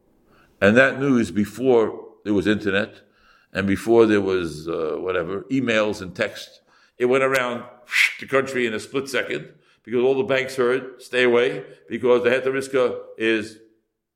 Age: 60-79